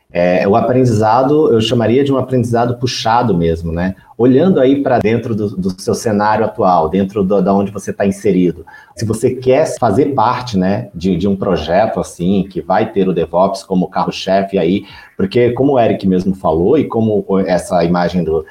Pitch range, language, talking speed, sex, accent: 95-130 Hz, Portuguese, 175 wpm, male, Brazilian